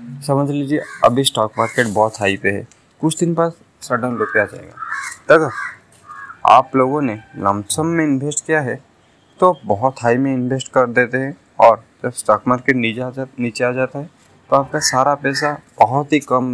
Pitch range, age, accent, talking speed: 115-150 Hz, 20-39, native, 175 wpm